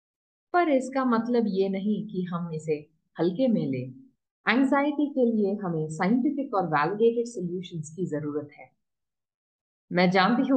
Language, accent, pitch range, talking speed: Hindi, native, 160-225 Hz, 130 wpm